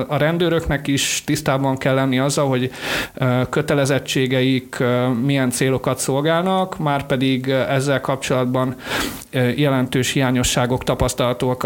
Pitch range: 125-140 Hz